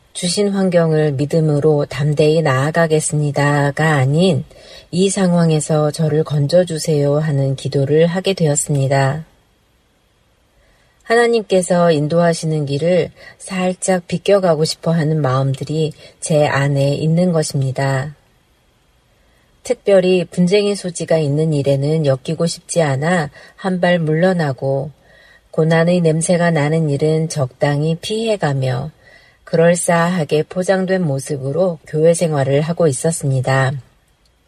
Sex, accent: female, native